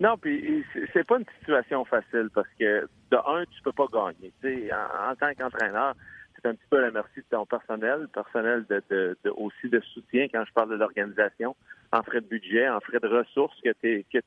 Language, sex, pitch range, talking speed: French, male, 115-150 Hz, 225 wpm